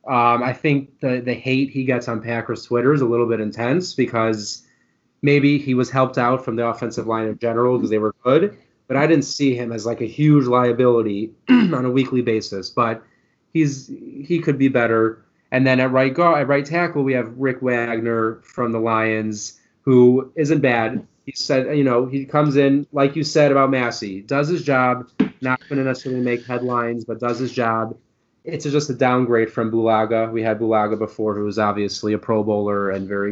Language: English